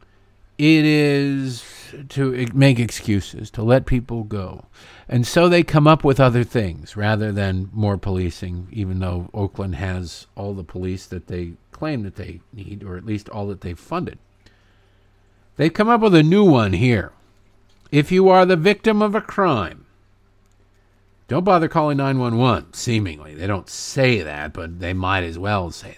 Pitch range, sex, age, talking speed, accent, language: 100-140 Hz, male, 50-69, 170 wpm, American, English